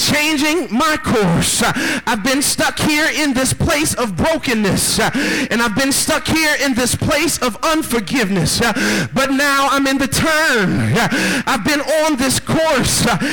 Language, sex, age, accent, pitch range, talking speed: English, male, 40-59, American, 250-305 Hz, 150 wpm